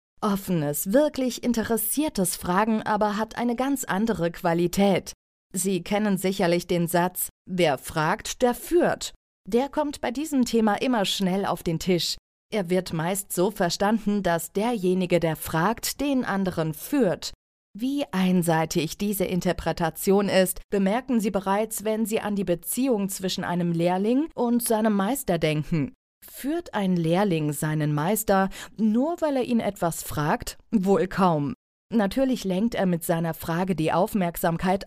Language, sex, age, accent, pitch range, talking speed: German, female, 40-59, German, 170-220 Hz, 140 wpm